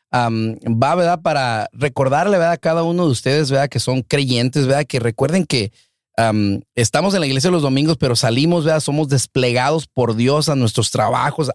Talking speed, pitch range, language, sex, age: 185 wpm, 115-150 Hz, Spanish, male, 40-59